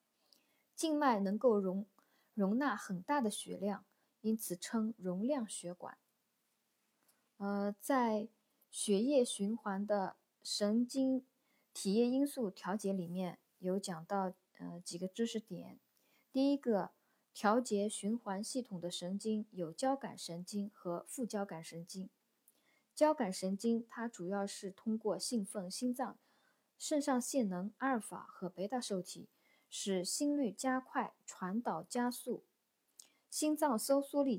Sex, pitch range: female, 195-255 Hz